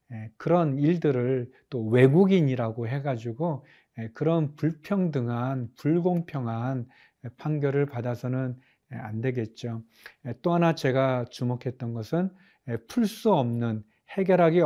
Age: 40-59